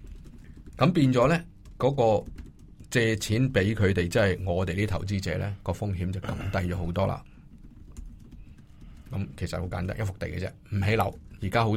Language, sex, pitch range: Chinese, male, 90-115 Hz